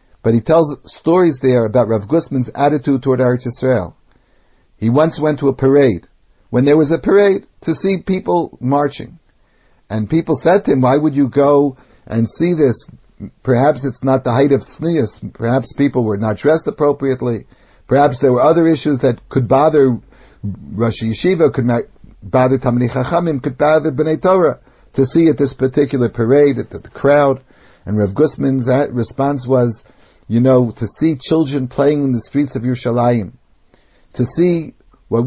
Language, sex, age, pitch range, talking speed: English, male, 60-79, 120-145 Hz, 165 wpm